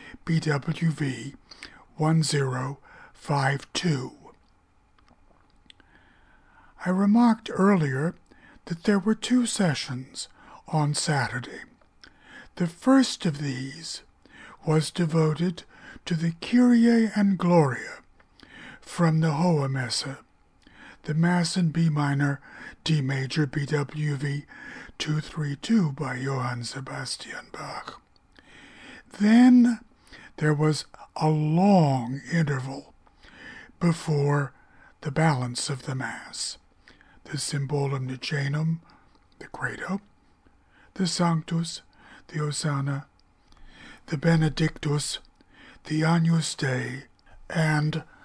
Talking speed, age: 85 wpm, 60-79